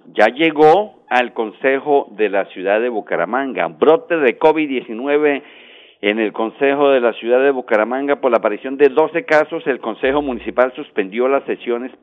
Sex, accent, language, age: male, Mexican, Spanish, 50-69